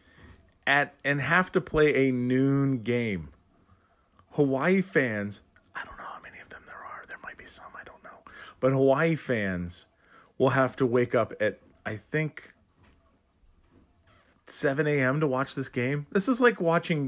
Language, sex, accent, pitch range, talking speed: English, male, American, 85-115 Hz, 165 wpm